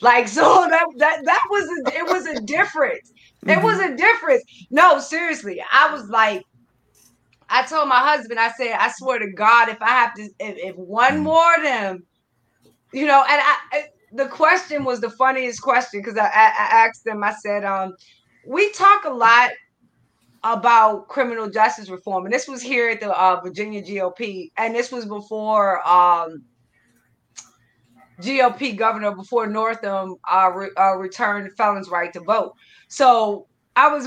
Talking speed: 170 wpm